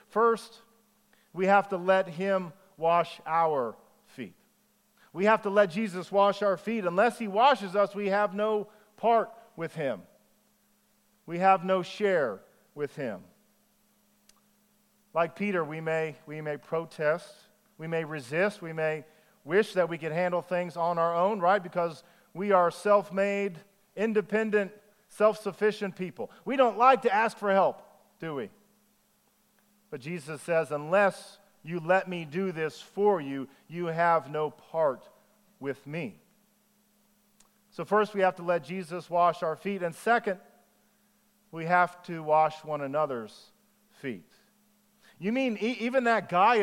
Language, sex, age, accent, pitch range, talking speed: English, male, 40-59, American, 170-215 Hz, 145 wpm